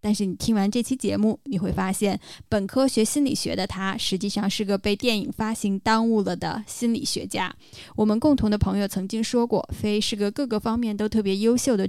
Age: 20-39